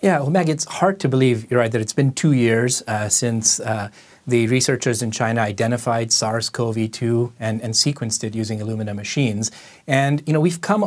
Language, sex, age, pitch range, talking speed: English, male, 30-49, 115-140 Hz, 195 wpm